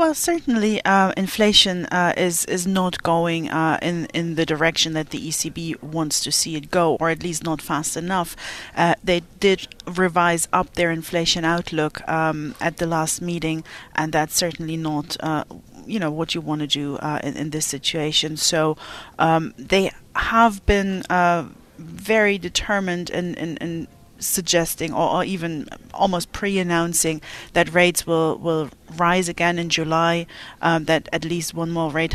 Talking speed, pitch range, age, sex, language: 170 wpm, 160-180 Hz, 40-59, female, English